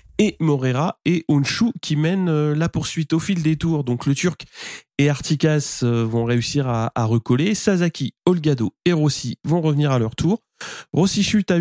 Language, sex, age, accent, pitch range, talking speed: French, male, 30-49, French, 120-160 Hz, 175 wpm